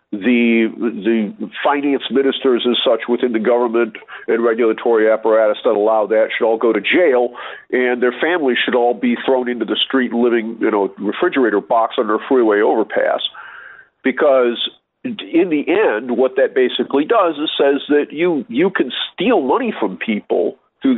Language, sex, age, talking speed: English, male, 50-69, 165 wpm